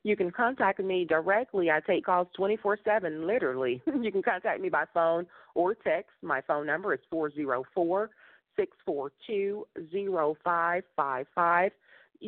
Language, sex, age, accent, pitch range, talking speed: English, female, 40-59, American, 150-215 Hz, 110 wpm